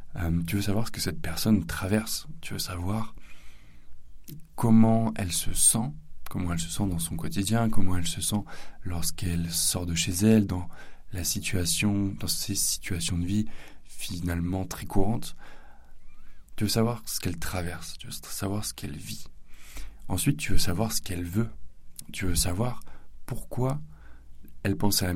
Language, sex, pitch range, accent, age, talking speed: French, male, 85-105 Hz, French, 20-39, 165 wpm